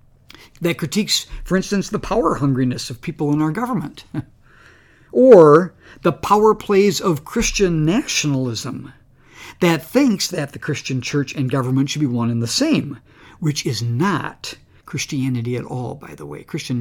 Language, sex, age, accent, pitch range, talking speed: English, male, 60-79, American, 125-165 Hz, 145 wpm